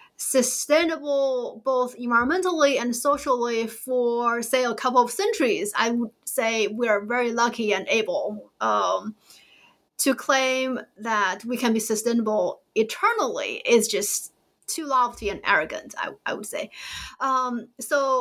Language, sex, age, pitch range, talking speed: English, female, 30-49, 225-270 Hz, 135 wpm